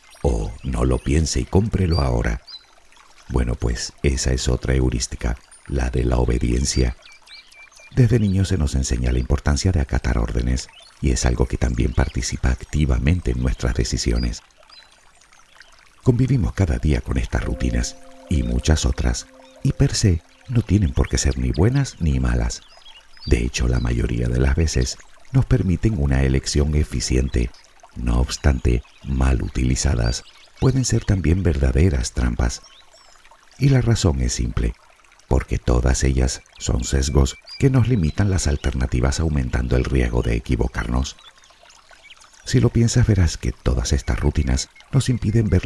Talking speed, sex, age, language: 145 wpm, male, 50-69, Spanish